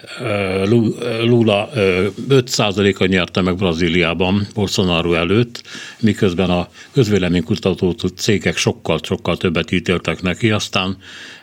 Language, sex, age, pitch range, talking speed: Hungarian, male, 60-79, 90-110 Hz, 95 wpm